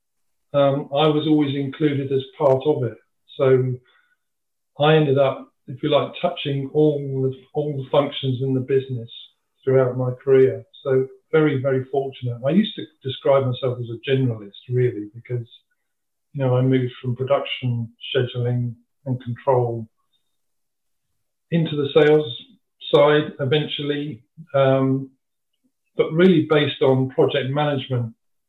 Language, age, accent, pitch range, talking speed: English, 50-69, British, 130-150 Hz, 135 wpm